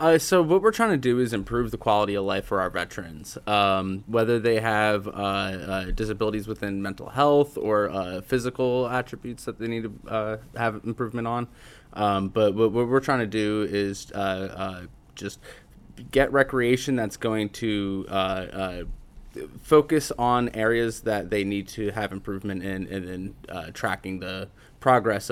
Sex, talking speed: male, 175 wpm